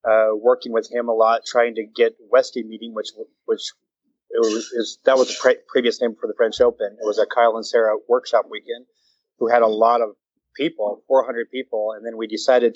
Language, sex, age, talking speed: English, male, 30-49, 225 wpm